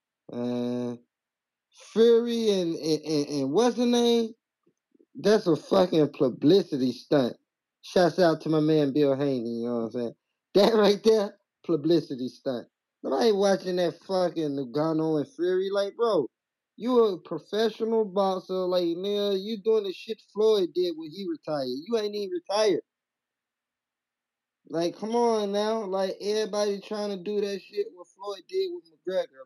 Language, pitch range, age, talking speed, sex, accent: English, 150-210 Hz, 20-39, 155 wpm, male, American